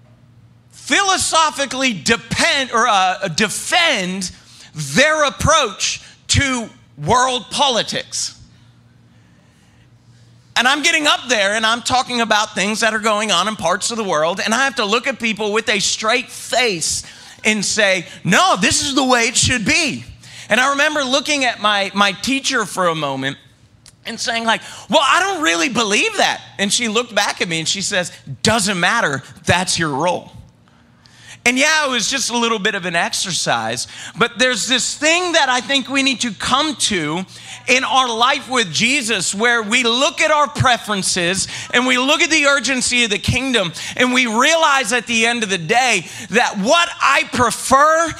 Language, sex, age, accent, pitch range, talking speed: English, male, 40-59, American, 185-260 Hz, 175 wpm